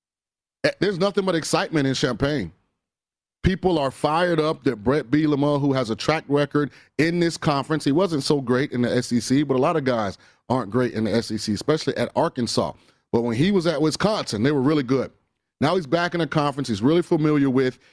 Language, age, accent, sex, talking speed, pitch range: English, 30-49, American, male, 210 wpm, 130-165 Hz